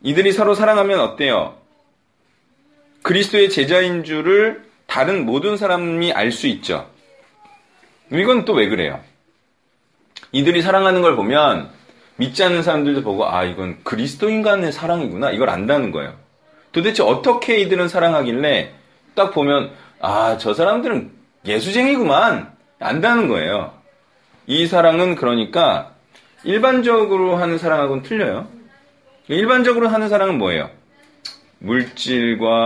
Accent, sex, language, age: native, male, Korean, 30-49